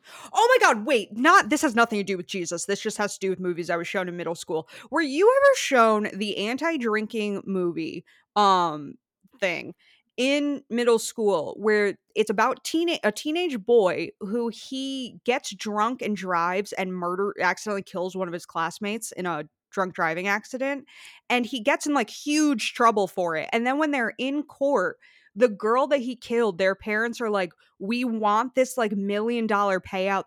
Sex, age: female, 20-39